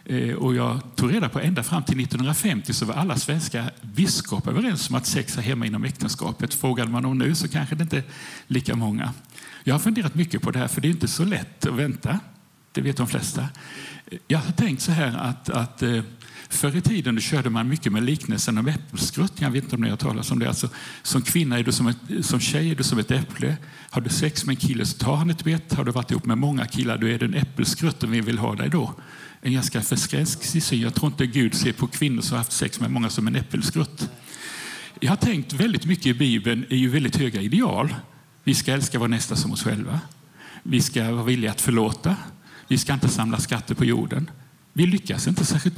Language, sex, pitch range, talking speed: Swedish, male, 125-155 Hz, 230 wpm